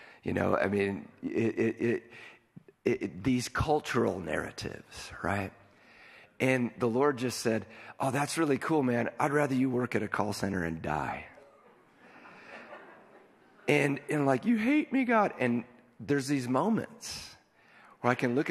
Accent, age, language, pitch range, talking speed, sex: American, 50-69, English, 105-135 Hz, 150 wpm, male